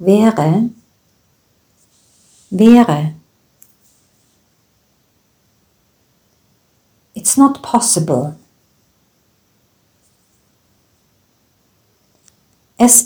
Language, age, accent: German, 60-79, German